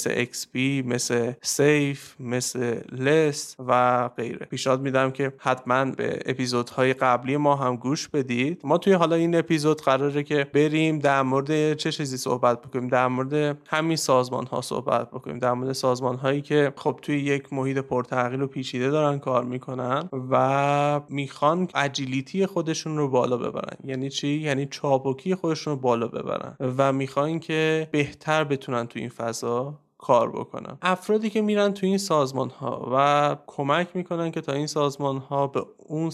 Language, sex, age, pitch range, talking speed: Persian, male, 30-49, 130-155 Hz, 155 wpm